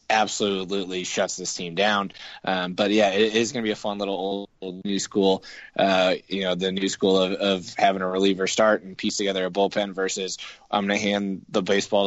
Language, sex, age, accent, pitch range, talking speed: English, male, 20-39, American, 95-100 Hz, 205 wpm